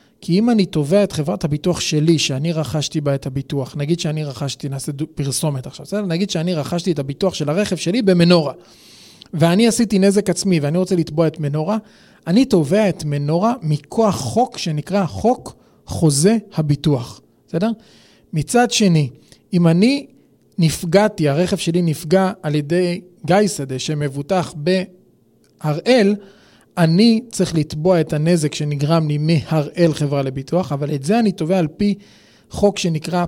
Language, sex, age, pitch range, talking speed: Hebrew, male, 30-49, 150-200 Hz, 145 wpm